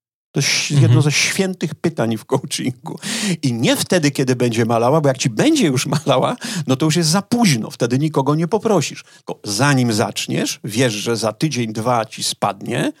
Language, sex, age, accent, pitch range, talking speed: Polish, male, 40-59, native, 120-165 Hz, 180 wpm